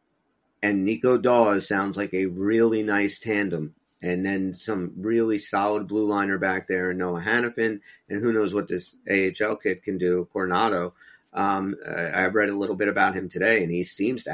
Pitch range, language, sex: 90-110 Hz, English, male